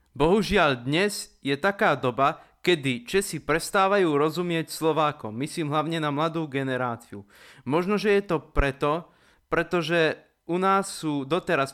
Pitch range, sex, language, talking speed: 135-180 Hz, male, Slovak, 130 wpm